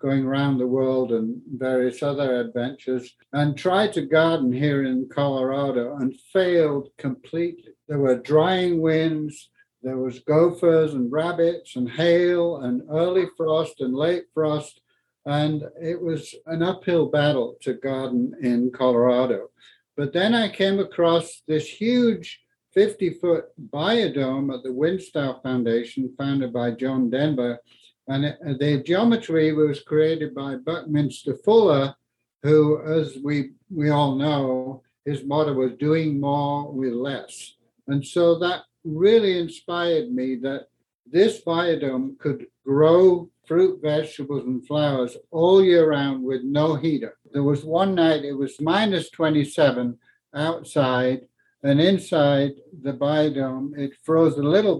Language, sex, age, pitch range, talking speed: English, male, 60-79, 135-165 Hz, 135 wpm